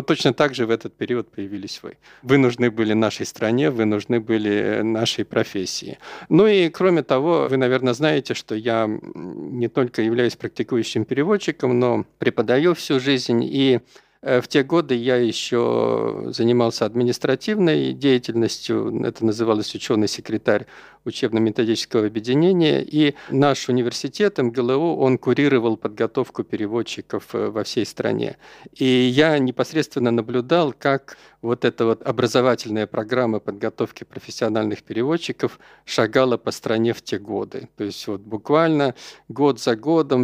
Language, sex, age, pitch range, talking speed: Russian, male, 50-69, 115-140 Hz, 130 wpm